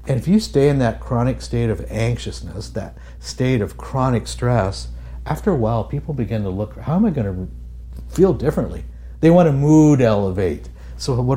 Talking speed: 190 wpm